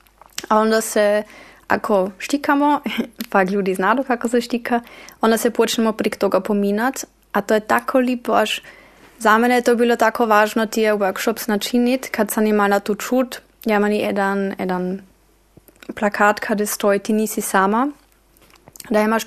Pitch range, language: 205-240 Hz, Croatian